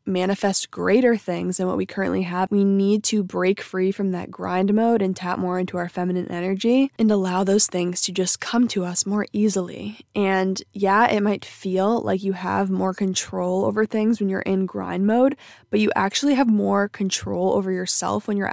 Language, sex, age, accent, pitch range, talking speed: English, female, 20-39, American, 185-210 Hz, 200 wpm